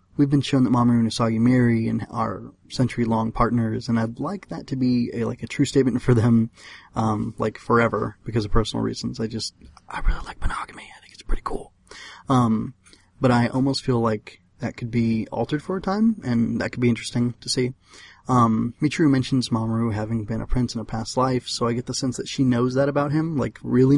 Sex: male